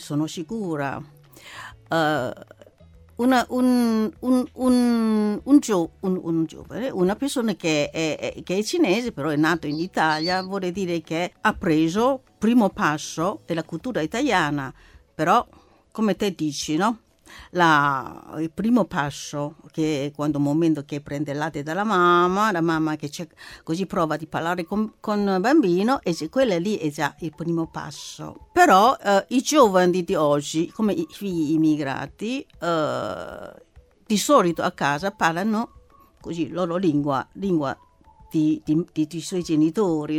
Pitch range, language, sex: 155-205 Hz, Italian, female